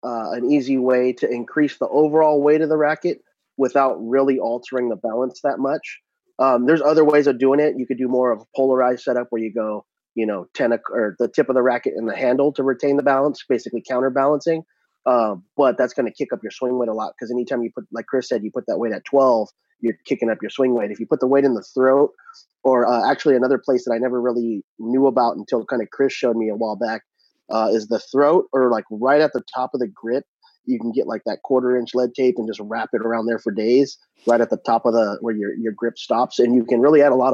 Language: English